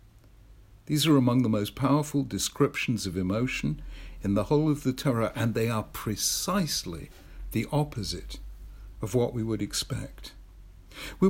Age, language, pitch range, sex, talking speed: 60-79, English, 105-140 Hz, male, 145 wpm